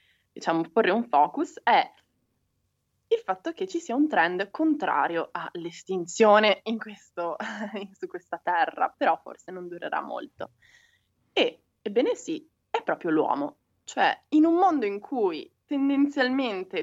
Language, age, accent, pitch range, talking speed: Italian, 20-39, native, 190-320 Hz, 135 wpm